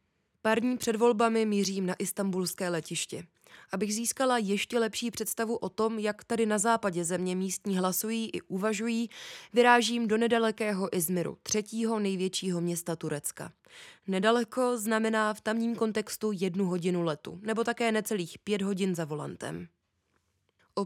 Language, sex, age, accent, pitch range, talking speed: Czech, female, 20-39, native, 185-225 Hz, 140 wpm